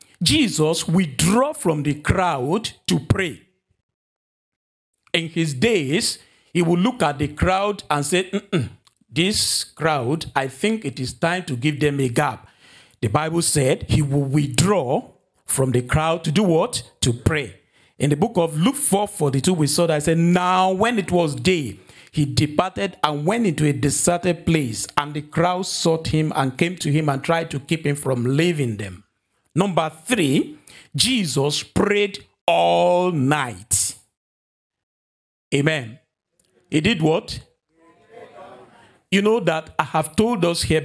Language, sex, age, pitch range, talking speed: English, male, 50-69, 135-180 Hz, 155 wpm